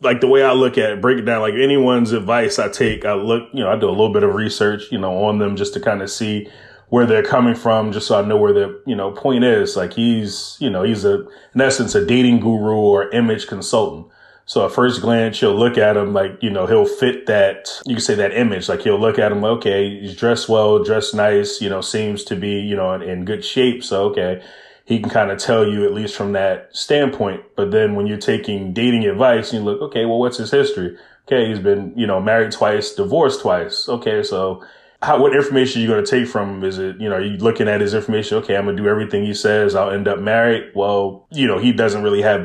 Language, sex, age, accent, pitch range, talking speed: English, male, 20-39, American, 100-125 Hz, 255 wpm